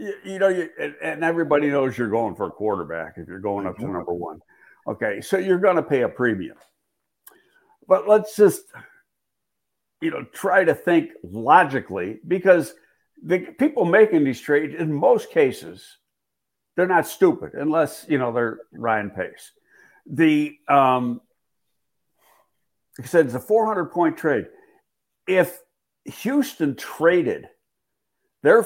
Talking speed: 135 wpm